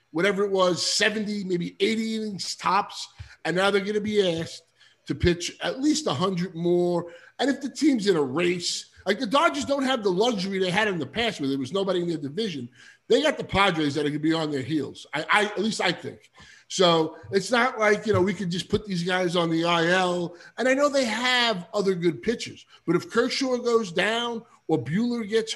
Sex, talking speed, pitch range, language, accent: male, 225 wpm, 170-230 Hz, English, American